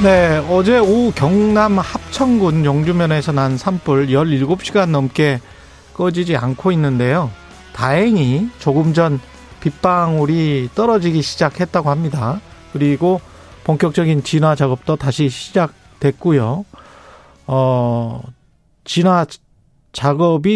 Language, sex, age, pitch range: Korean, male, 40-59, 140-190 Hz